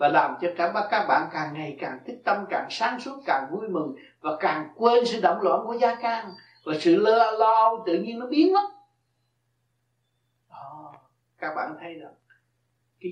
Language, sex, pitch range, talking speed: Vietnamese, male, 155-235 Hz, 190 wpm